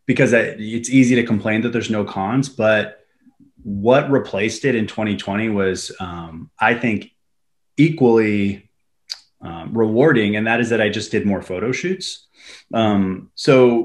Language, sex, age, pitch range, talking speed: English, male, 20-39, 95-115 Hz, 150 wpm